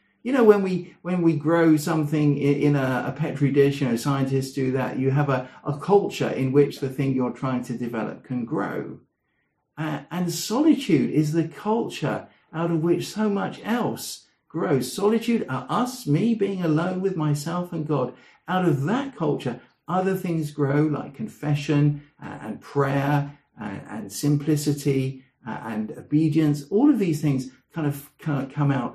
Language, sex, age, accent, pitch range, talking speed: English, male, 50-69, British, 140-175 Hz, 165 wpm